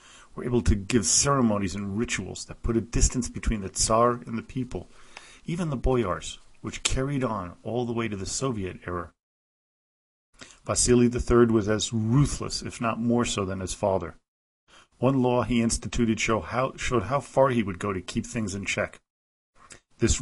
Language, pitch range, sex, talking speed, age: English, 95-120 Hz, male, 170 wpm, 40-59